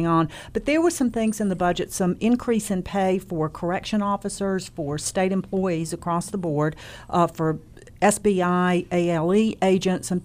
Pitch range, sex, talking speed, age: 170-210 Hz, female, 165 wpm, 50-69